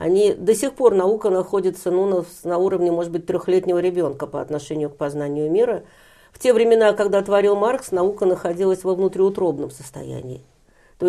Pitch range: 170-225 Hz